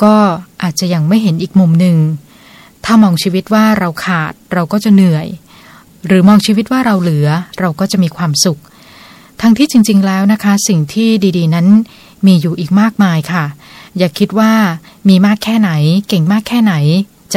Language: Thai